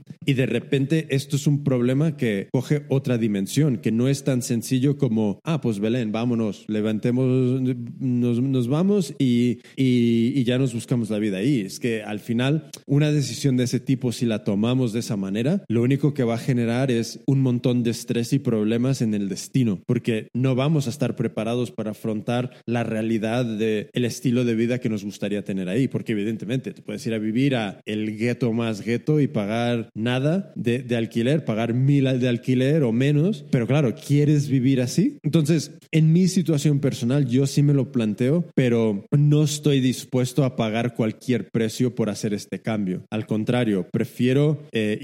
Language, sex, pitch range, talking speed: Spanish, male, 110-135 Hz, 185 wpm